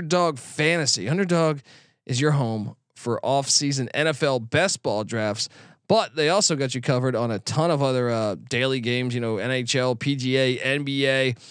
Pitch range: 130-170 Hz